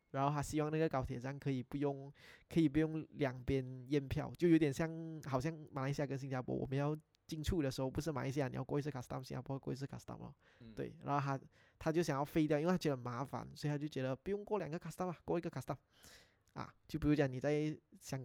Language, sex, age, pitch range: Chinese, male, 20-39, 135-165 Hz